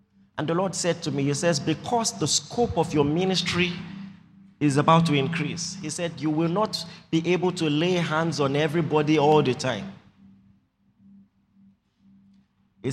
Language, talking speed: English, 160 wpm